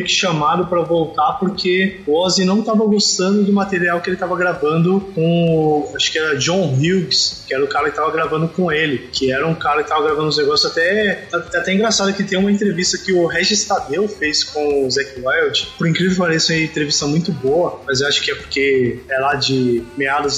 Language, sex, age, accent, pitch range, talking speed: Portuguese, male, 20-39, Brazilian, 155-190 Hz, 225 wpm